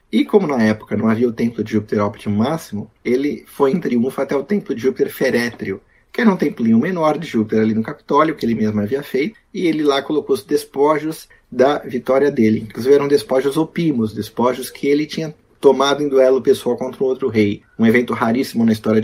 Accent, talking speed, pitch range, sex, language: Brazilian, 210 wpm, 125-205 Hz, male, Portuguese